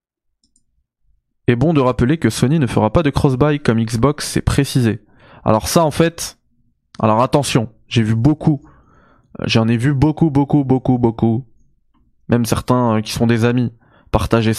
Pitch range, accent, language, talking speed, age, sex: 110-135 Hz, French, French, 160 wpm, 20-39, male